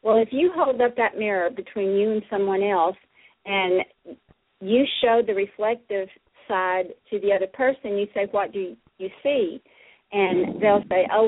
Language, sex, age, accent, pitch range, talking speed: English, female, 50-69, American, 195-255 Hz, 170 wpm